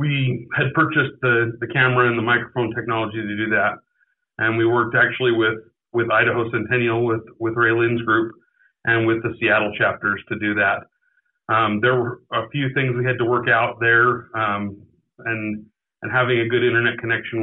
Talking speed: 185 wpm